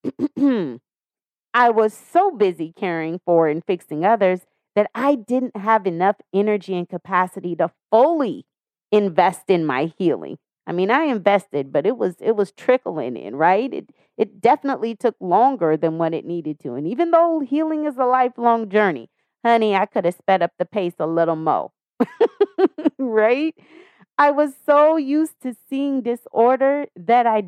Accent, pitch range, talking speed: American, 175-255 Hz, 160 wpm